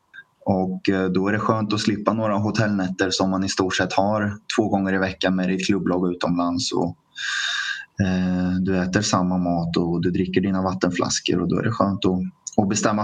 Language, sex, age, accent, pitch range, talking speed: Swedish, male, 20-39, native, 95-105 Hz, 195 wpm